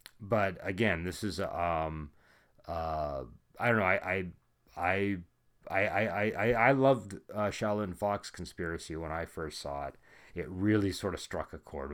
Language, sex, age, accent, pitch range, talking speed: English, male, 30-49, American, 80-100 Hz, 160 wpm